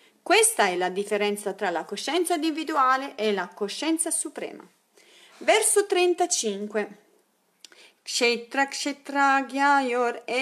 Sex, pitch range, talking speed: female, 205-275 Hz, 85 wpm